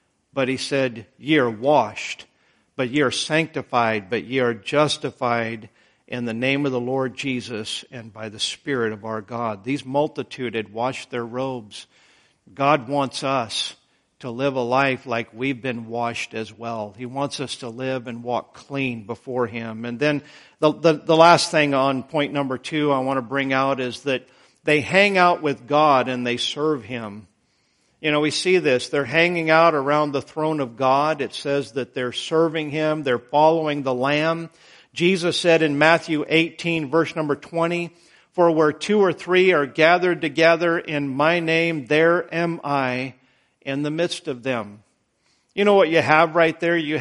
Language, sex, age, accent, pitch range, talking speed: English, male, 50-69, American, 125-165 Hz, 180 wpm